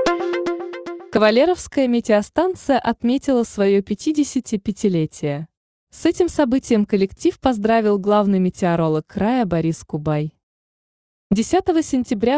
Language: Russian